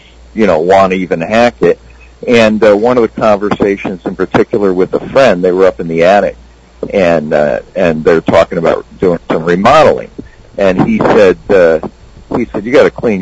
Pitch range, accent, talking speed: 80-110 Hz, American, 195 wpm